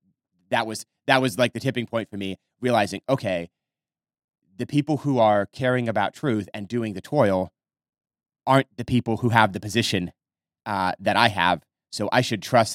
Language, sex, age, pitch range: English, male, 30-49, 100-120 Hz